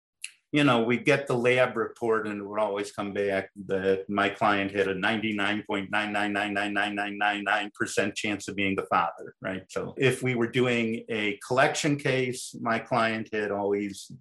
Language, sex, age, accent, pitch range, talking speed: English, male, 50-69, American, 100-135 Hz, 155 wpm